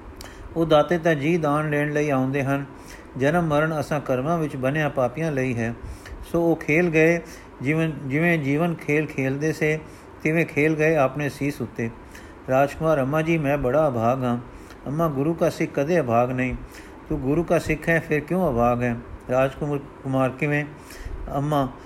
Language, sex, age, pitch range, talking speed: Punjabi, male, 50-69, 130-160 Hz, 165 wpm